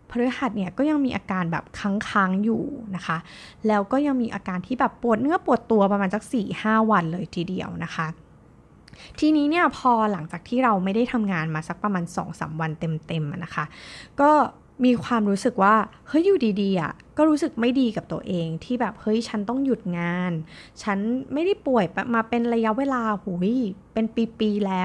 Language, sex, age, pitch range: Thai, female, 20-39, 190-270 Hz